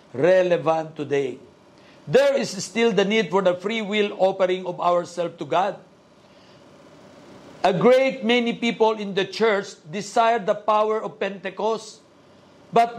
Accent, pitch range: native, 195-245 Hz